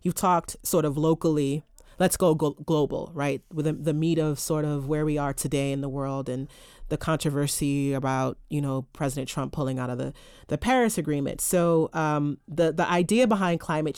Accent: American